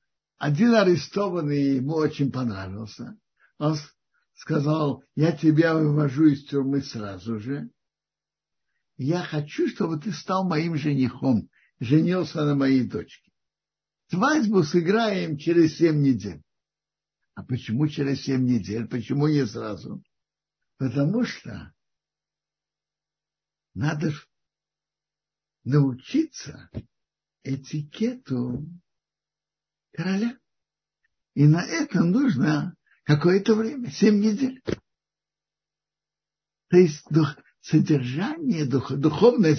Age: 60-79